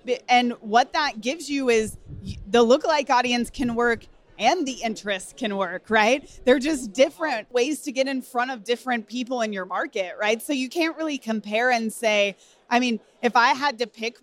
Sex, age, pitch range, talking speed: female, 30-49, 215-260 Hz, 195 wpm